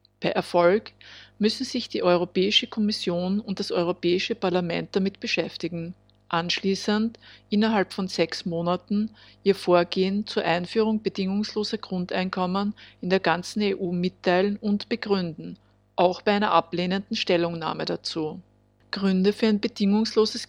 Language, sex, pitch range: German, female, 175-205 Hz